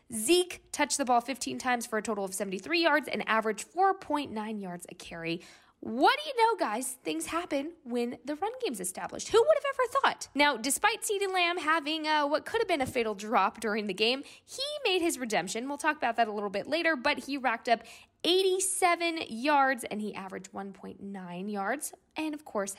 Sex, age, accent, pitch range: female, 10-29, American, 205-325 Hz